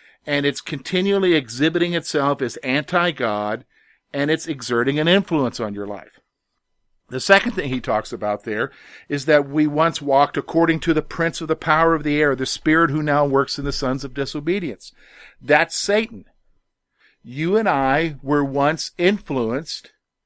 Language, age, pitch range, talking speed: English, 50-69, 130-165 Hz, 165 wpm